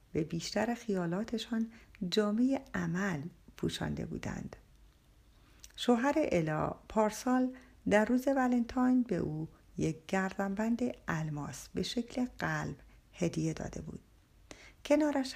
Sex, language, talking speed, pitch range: female, Persian, 100 wpm, 175-240 Hz